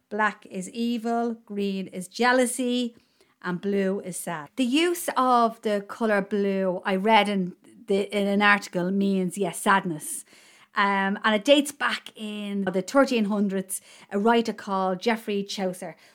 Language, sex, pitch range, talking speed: English, female, 190-240 Hz, 145 wpm